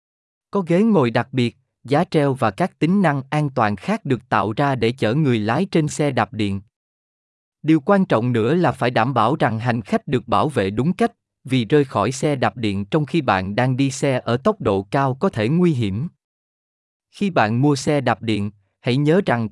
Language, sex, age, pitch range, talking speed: Vietnamese, male, 20-39, 110-155 Hz, 215 wpm